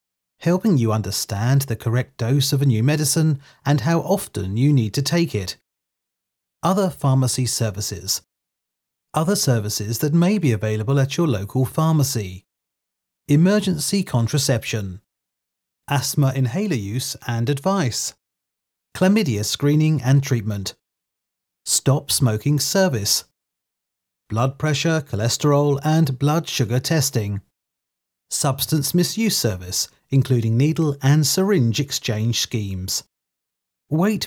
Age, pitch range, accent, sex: 30-49, 115-155 Hz, British, male